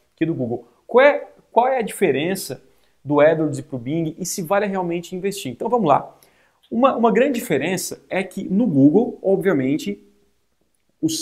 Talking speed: 175 wpm